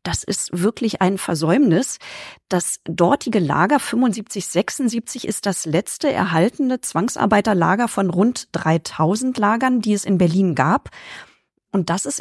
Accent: German